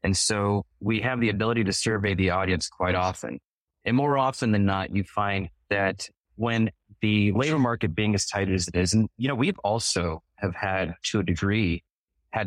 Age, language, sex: 30-49, English, male